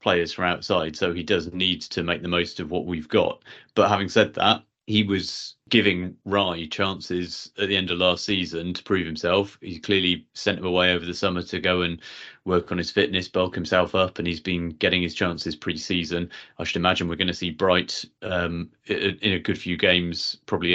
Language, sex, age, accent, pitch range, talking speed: English, male, 30-49, British, 85-95 Hz, 215 wpm